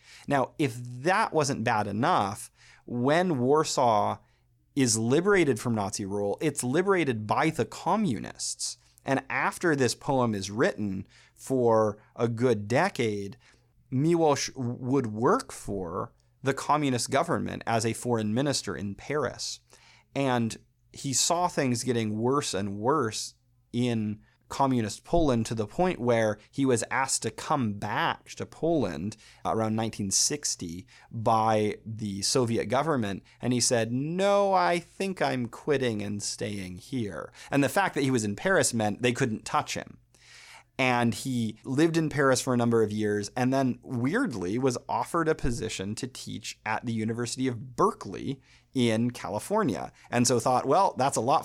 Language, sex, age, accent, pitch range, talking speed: English, male, 30-49, American, 110-135 Hz, 150 wpm